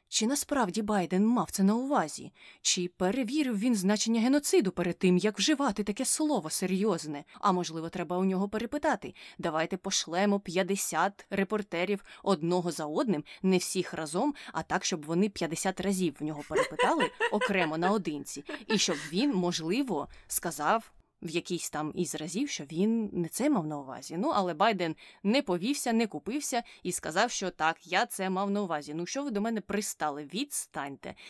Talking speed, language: 165 wpm, Ukrainian